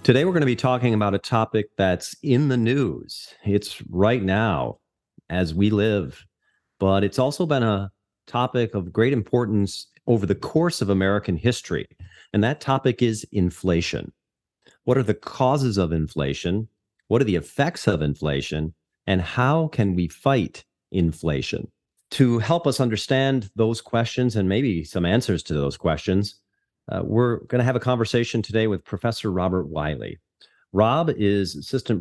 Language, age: English, 40-59